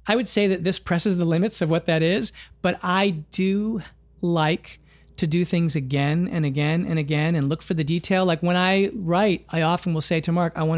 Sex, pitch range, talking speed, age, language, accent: male, 155-185 Hz, 230 wpm, 40-59, English, American